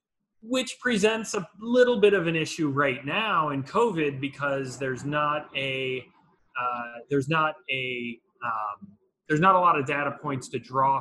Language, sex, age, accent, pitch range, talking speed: English, male, 30-49, American, 135-170 Hz, 165 wpm